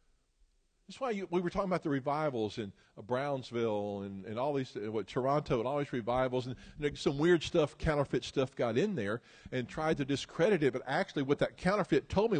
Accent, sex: American, male